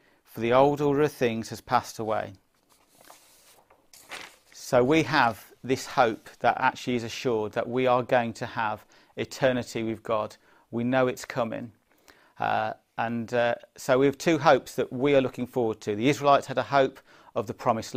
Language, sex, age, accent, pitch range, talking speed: English, male, 40-59, British, 115-135 Hz, 175 wpm